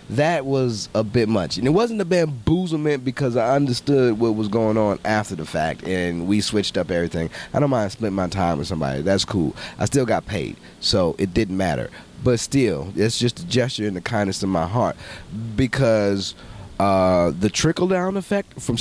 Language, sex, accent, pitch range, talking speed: English, male, American, 100-140 Hz, 200 wpm